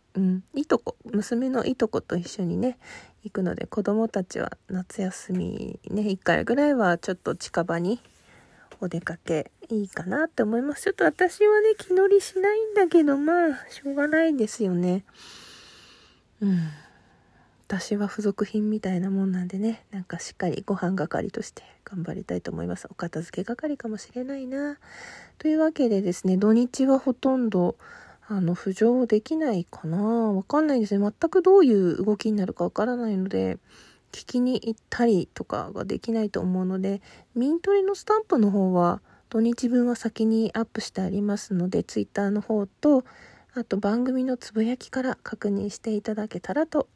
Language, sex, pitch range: Japanese, female, 190-255 Hz